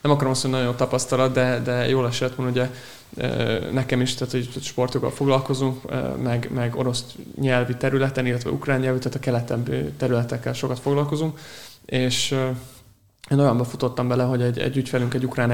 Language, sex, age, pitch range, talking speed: Hungarian, male, 20-39, 120-130 Hz, 165 wpm